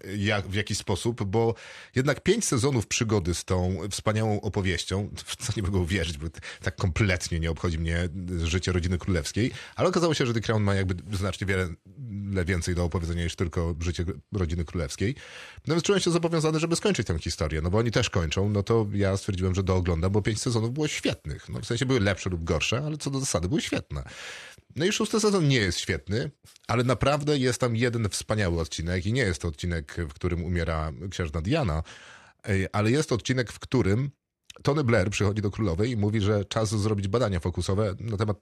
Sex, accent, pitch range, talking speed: male, native, 90-125 Hz, 200 wpm